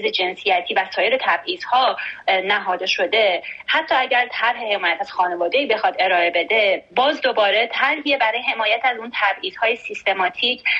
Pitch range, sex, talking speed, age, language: 195-245 Hz, female, 145 wpm, 30-49, Persian